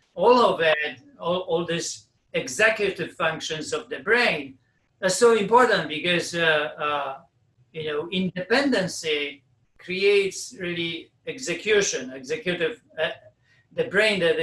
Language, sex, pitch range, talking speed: English, male, 145-185 Hz, 115 wpm